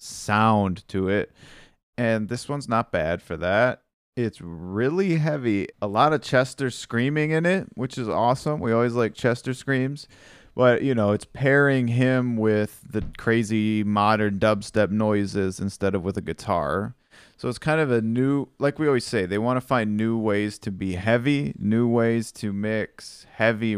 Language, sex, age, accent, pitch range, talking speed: English, male, 30-49, American, 105-125 Hz, 175 wpm